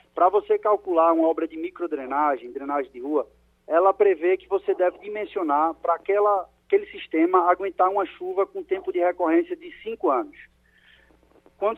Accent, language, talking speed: Brazilian, Portuguese, 155 wpm